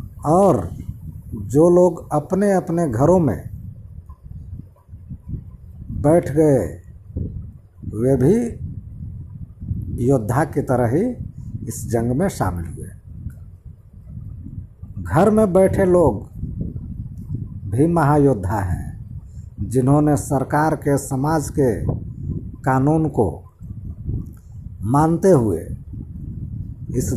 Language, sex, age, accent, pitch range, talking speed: Hindi, male, 60-79, native, 100-155 Hz, 80 wpm